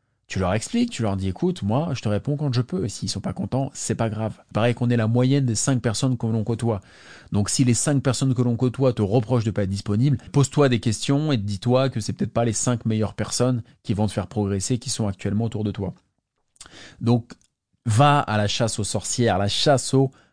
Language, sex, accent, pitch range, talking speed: English, male, French, 105-125 Hz, 250 wpm